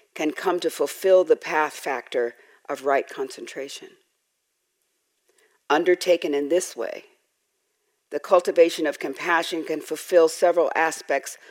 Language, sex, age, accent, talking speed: English, female, 50-69, American, 115 wpm